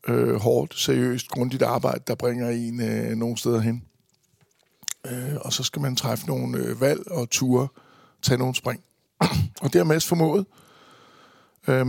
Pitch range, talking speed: 125-150 Hz, 155 wpm